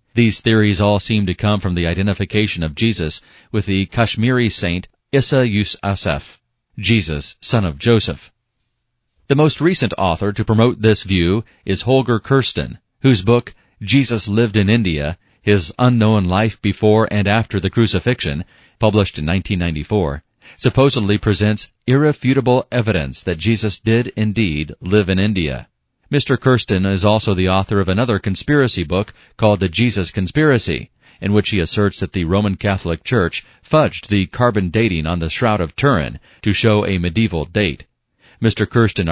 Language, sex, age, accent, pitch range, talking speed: English, male, 40-59, American, 95-115 Hz, 155 wpm